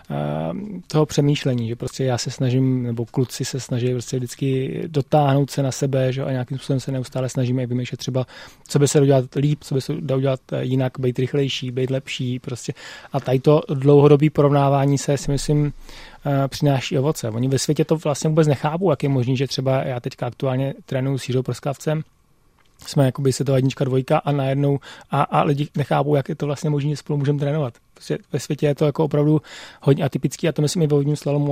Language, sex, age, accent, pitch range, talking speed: Czech, male, 30-49, native, 130-145 Hz, 205 wpm